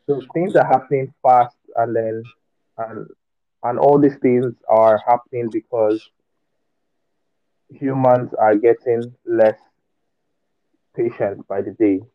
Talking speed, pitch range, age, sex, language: 115 wpm, 110-140 Hz, 20-39, male, English